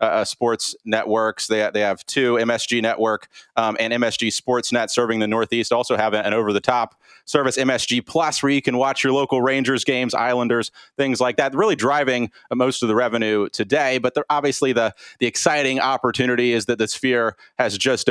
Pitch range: 115-135 Hz